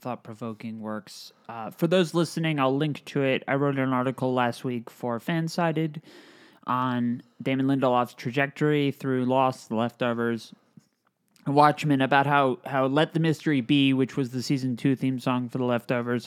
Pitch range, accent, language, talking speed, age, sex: 125-170 Hz, American, English, 160 wpm, 20-39, male